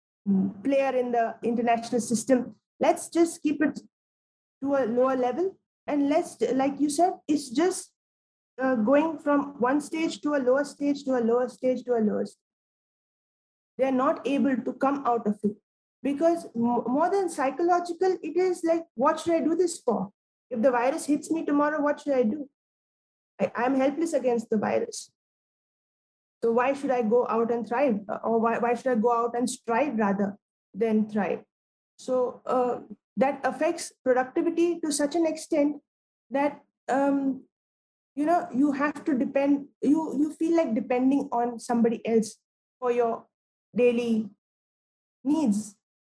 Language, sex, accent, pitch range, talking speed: English, female, Indian, 240-295 Hz, 160 wpm